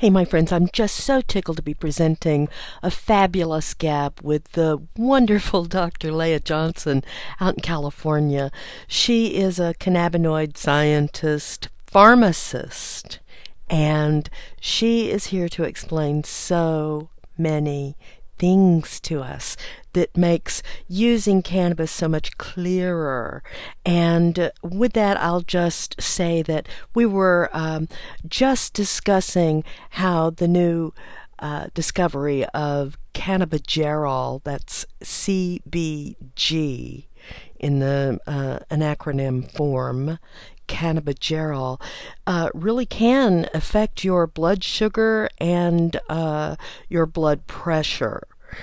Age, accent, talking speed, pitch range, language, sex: 50-69, American, 105 wpm, 150-185 Hz, English, female